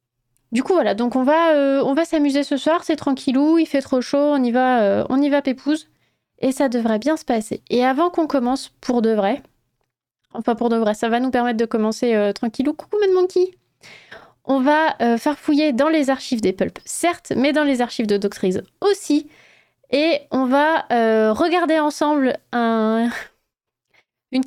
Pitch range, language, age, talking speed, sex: 205-285 Hz, French, 20-39, 195 wpm, female